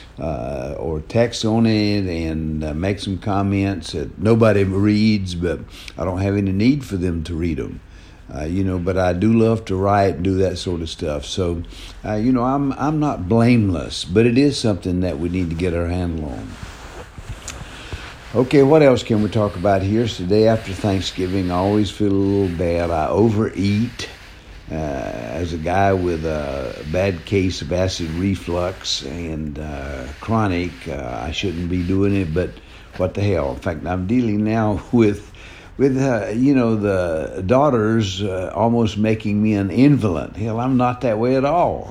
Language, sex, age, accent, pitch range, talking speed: English, male, 60-79, American, 90-110 Hz, 185 wpm